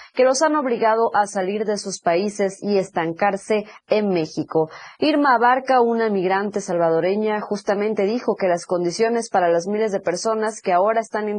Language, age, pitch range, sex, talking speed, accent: Spanish, 30-49, 180-230 Hz, female, 170 wpm, Mexican